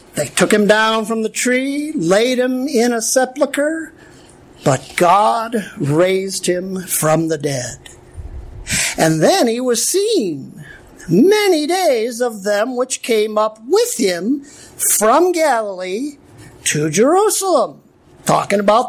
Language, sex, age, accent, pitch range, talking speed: English, male, 50-69, American, 205-320 Hz, 125 wpm